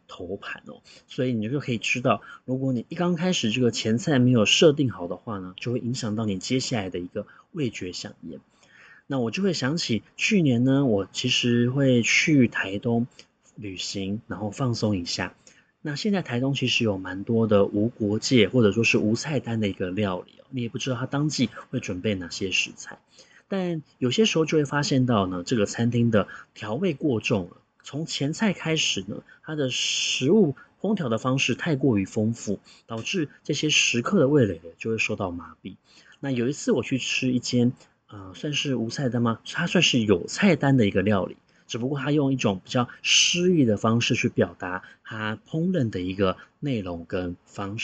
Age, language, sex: 30-49, Chinese, male